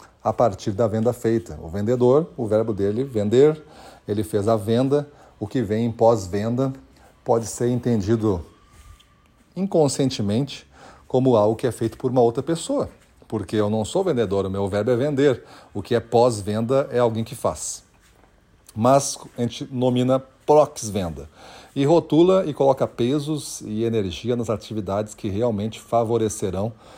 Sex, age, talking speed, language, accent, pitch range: male, 40-59, 150 wpm, Portuguese, Brazilian, 110-130 Hz